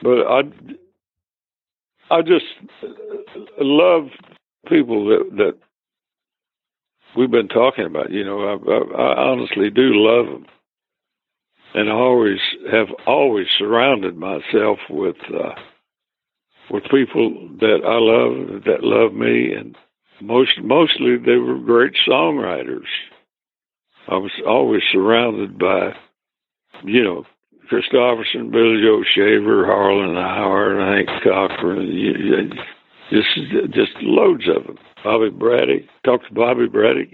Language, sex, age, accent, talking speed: English, male, 60-79, American, 120 wpm